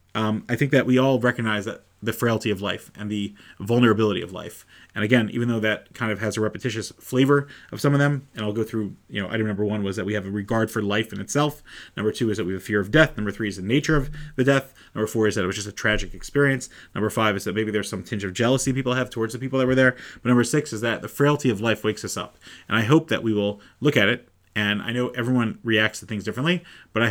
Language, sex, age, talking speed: English, male, 30-49, 285 wpm